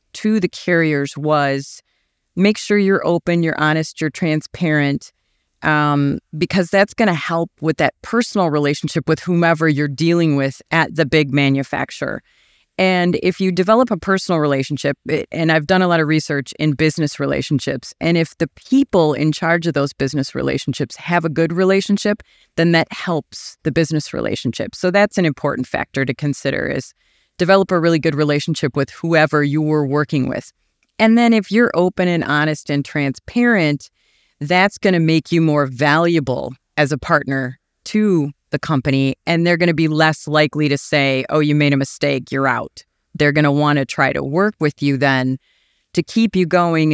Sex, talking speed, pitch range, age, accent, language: female, 180 wpm, 145-175 Hz, 30-49, American, English